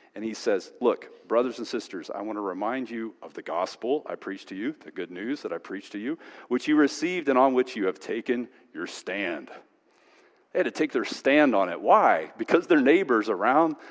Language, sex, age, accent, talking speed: English, male, 40-59, American, 220 wpm